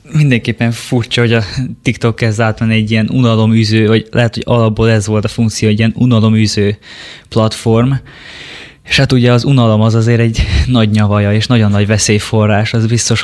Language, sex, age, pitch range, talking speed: Hungarian, male, 20-39, 105-115 Hz, 170 wpm